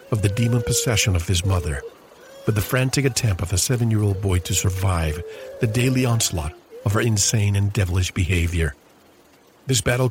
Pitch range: 90-115 Hz